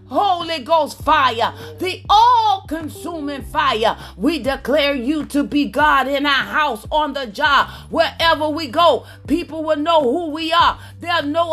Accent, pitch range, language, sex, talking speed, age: American, 280-340 Hz, English, female, 150 wpm, 30-49